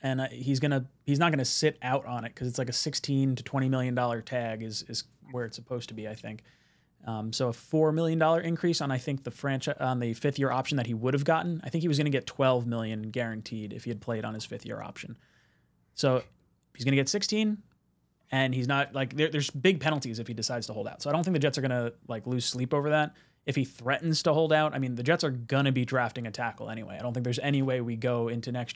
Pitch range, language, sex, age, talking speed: 120-140 Hz, English, male, 20-39, 265 wpm